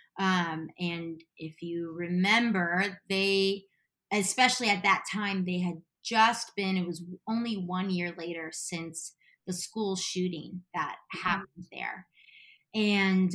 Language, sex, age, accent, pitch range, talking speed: English, female, 20-39, American, 175-210 Hz, 125 wpm